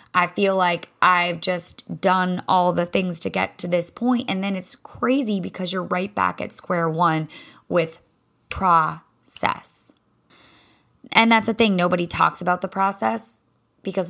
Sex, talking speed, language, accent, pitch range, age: female, 160 wpm, English, American, 155-195 Hz, 20-39